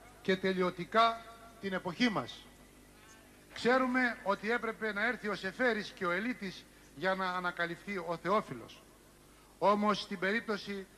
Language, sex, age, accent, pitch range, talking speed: Greek, male, 60-79, native, 195-240 Hz, 125 wpm